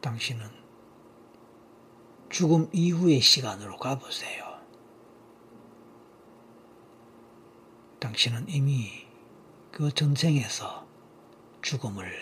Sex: male